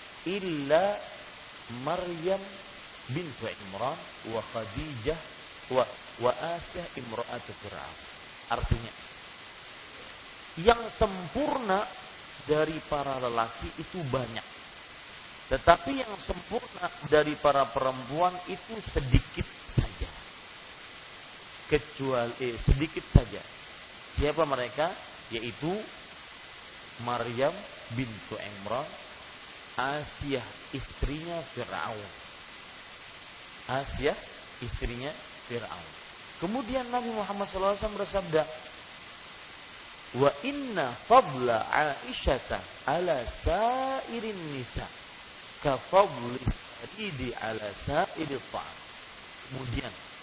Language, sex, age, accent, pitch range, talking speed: English, male, 40-59, Indonesian, 120-190 Hz, 75 wpm